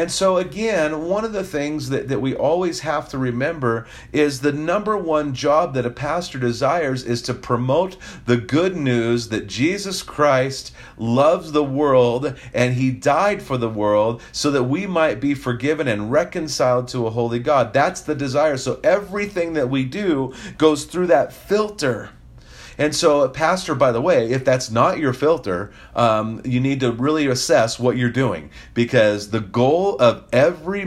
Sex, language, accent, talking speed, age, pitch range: male, English, American, 175 wpm, 40-59, 120-155 Hz